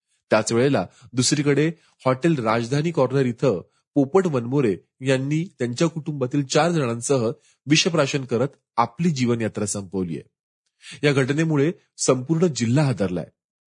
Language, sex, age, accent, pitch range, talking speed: Marathi, male, 30-49, native, 115-150 Hz, 85 wpm